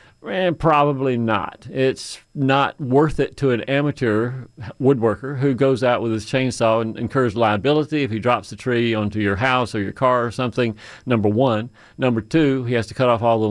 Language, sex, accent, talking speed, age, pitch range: English, male, American, 195 wpm, 40-59, 105-130 Hz